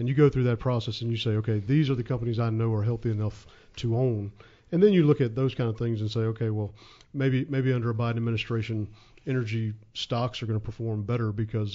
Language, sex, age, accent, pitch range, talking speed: English, male, 40-59, American, 110-135 Hz, 245 wpm